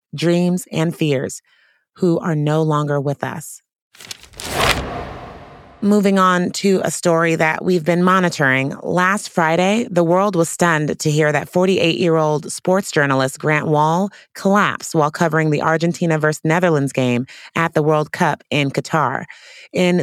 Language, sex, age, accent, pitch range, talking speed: English, female, 30-49, American, 150-180 Hz, 145 wpm